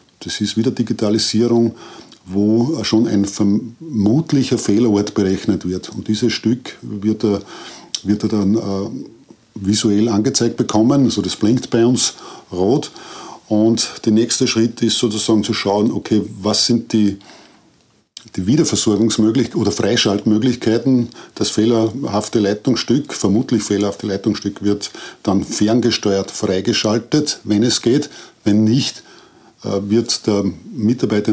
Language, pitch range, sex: German, 100-115 Hz, male